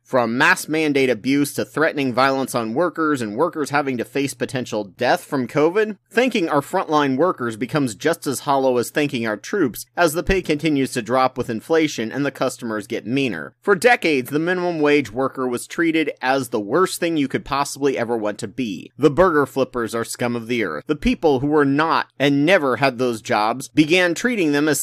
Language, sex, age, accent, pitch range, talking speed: English, male, 30-49, American, 125-165 Hz, 205 wpm